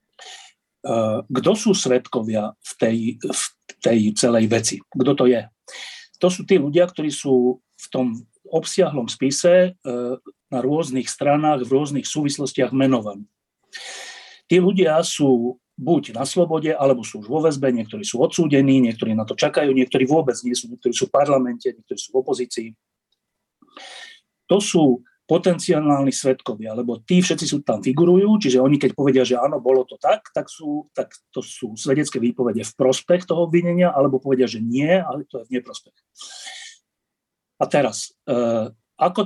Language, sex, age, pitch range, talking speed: Slovak, male, 40-59, 125-165 Hz, 155 wpm